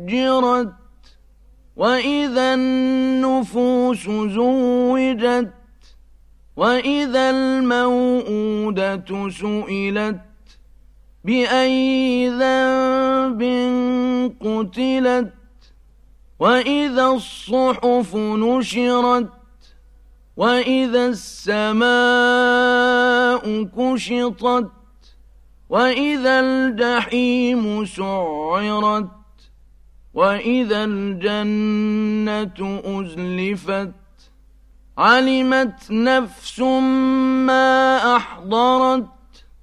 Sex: male